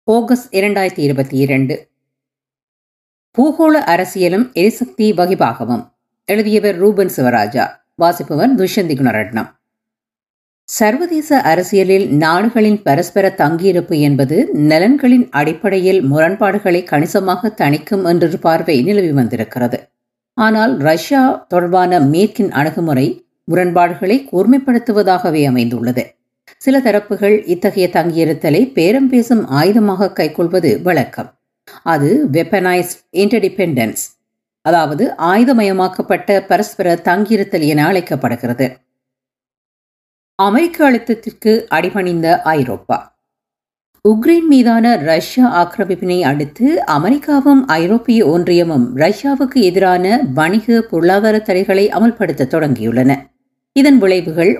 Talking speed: 80 wpm